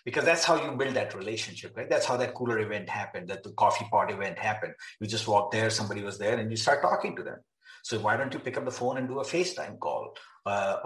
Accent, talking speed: Indian, 260 wpm